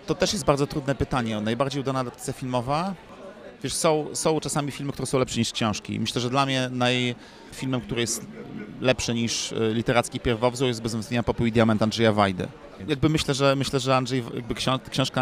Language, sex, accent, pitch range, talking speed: Polish, male, native, 110-130 Hz, 180 wpm